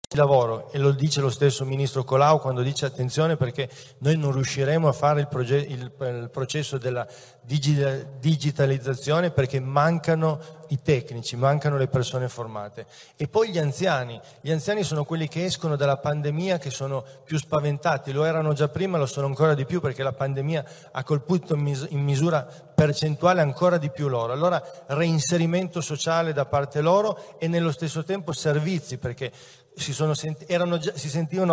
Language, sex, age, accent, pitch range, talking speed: Italian, male, 40-59, native, 135-160 Hz, 165 wpm